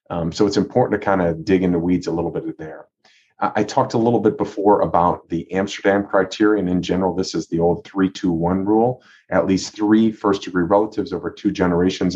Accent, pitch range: American, 85-105 Hz